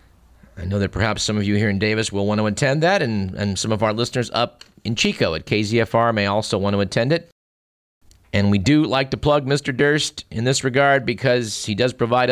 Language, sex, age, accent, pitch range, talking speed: English, male, 50-69, American, 100-130 Hz, 230 wpm